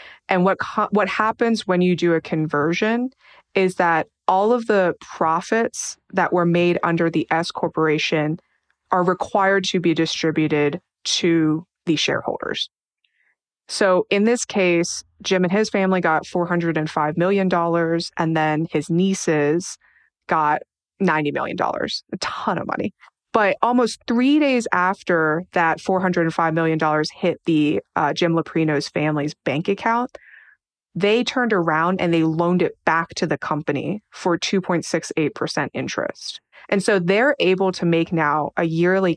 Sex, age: female, 20-39